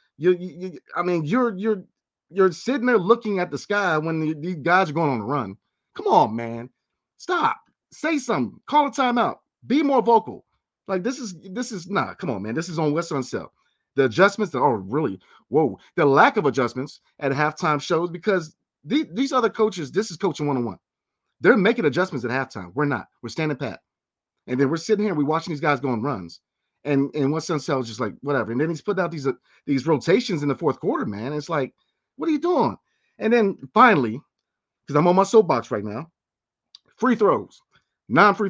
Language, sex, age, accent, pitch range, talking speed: English, male, 30-49, American, 140-210 Hz, 215 wpm